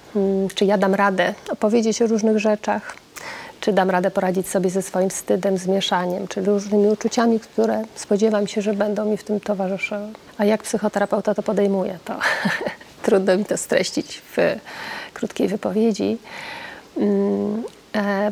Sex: female